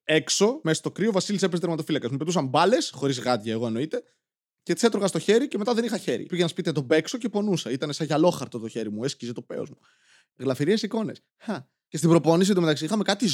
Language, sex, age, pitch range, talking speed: Greek, male, 20-39, 155-225 Hz, 215 wpm